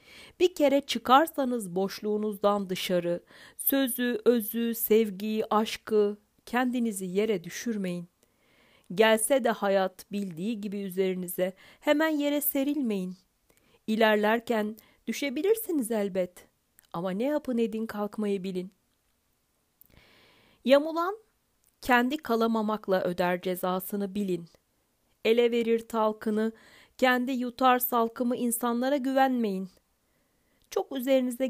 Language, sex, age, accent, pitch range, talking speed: Turkish, female, 40-59, native, 205-260 Hz, 90 wpm